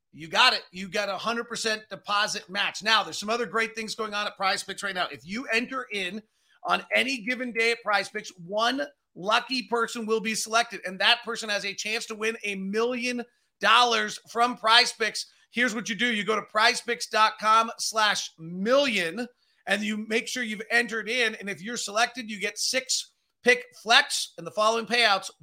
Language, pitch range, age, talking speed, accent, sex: English, 195-240 Hz, 30-49, 195 wpm, American, male